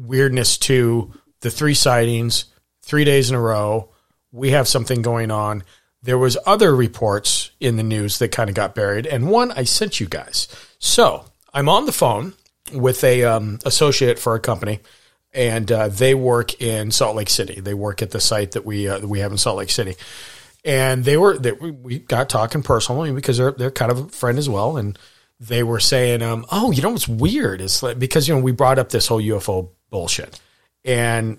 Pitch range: 110-140 Hz